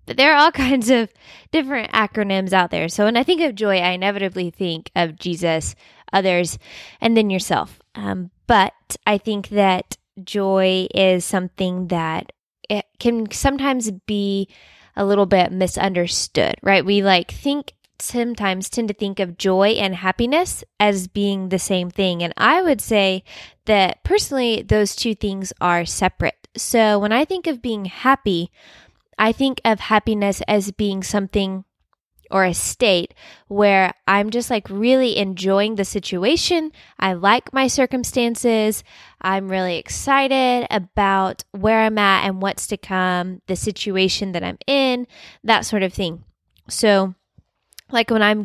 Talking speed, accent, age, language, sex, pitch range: 150 wpm, American, 10-29, English, female, 190-230 Hz